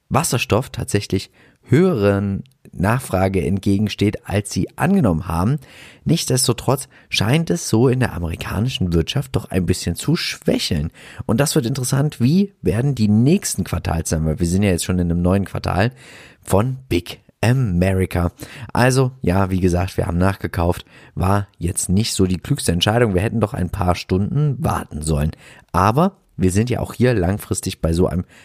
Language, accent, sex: German, German, male